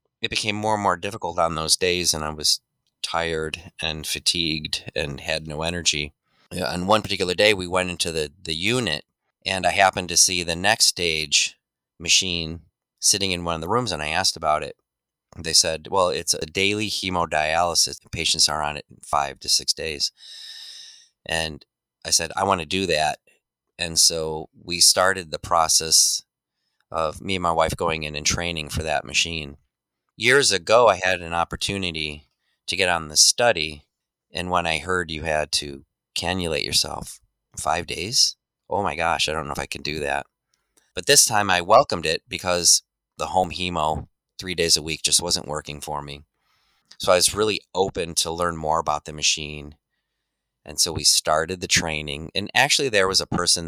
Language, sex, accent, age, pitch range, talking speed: English, male, American, 30-49, 75-95 Hz, 185 wpm